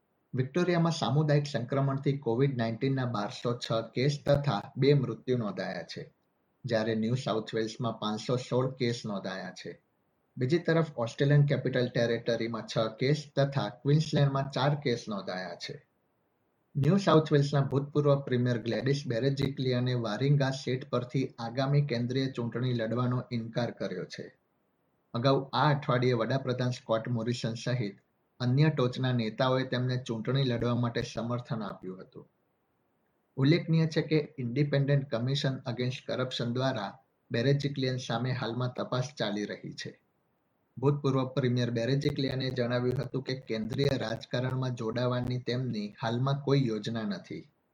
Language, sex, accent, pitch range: Gujarati, male, native, 115-140 Hz